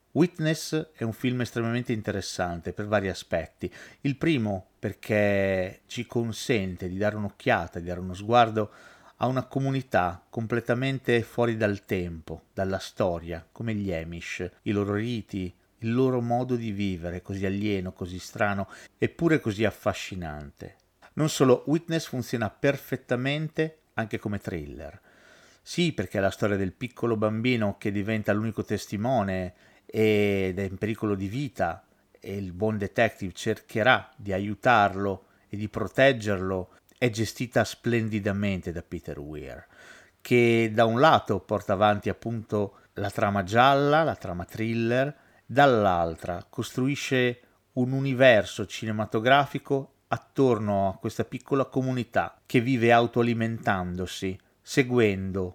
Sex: male